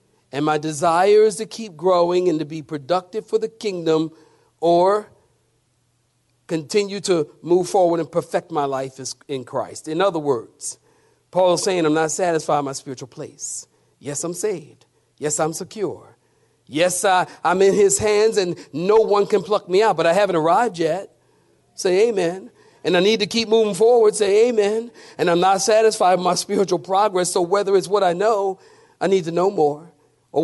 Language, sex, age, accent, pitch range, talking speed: English, male, 50-69, American, 155-210 Hz, 180 wpm